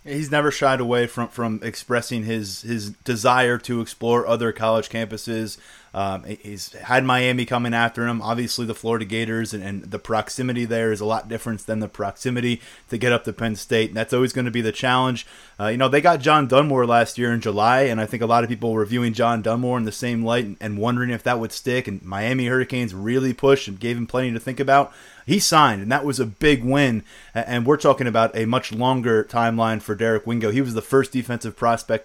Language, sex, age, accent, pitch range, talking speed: English, male, 20-39, American, 115-135 Hz, 230 wpm